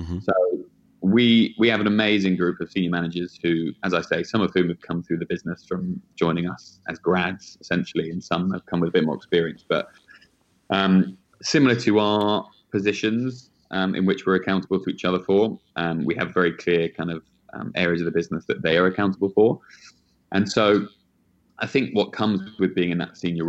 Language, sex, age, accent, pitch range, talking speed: English, male, 20-39, British, 85-105 Hz, 205 wpm